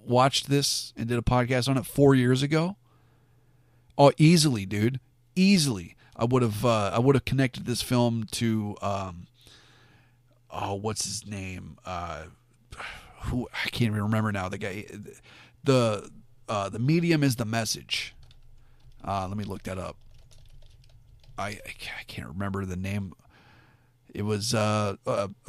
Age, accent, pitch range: 40-59, American, 110-130 Hz